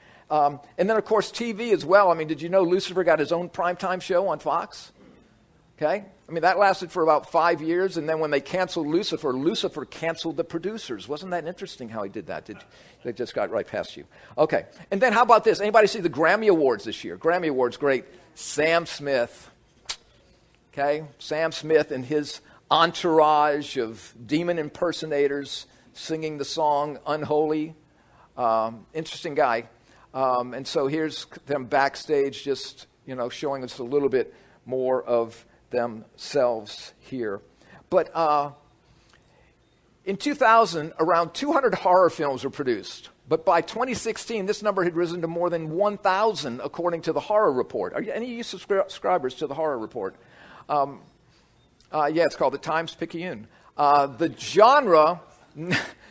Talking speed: 160 wpm